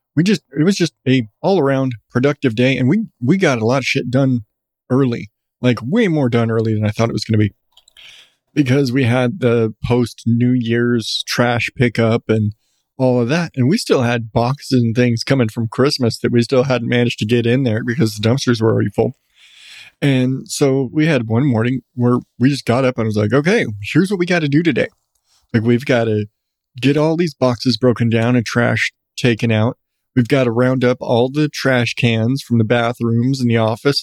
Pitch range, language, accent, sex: 120-135 Hz, English, American, male